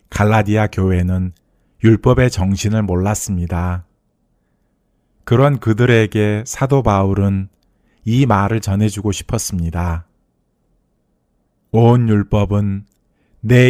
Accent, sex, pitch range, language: native, male, 95-120 Hz, Korean